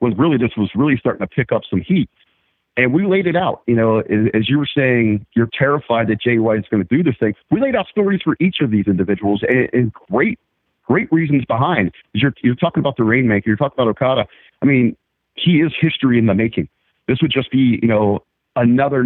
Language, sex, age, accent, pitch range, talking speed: English, male, 40-59, American, 110-135 Hz, 230 wpm